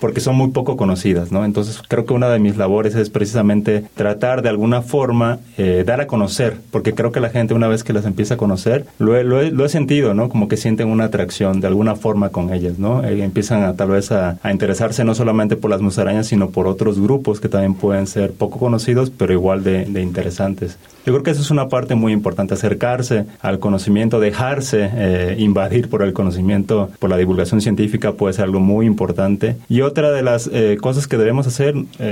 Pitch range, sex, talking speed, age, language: 100-120 Hz, male, 220 wpm, 30-49, Spanish